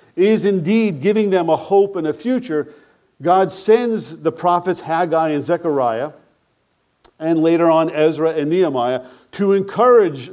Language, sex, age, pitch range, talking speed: English, male, 50-69, 155-200 Hz, 140 wpm